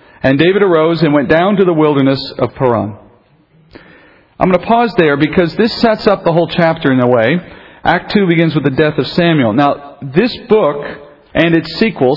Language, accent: English, American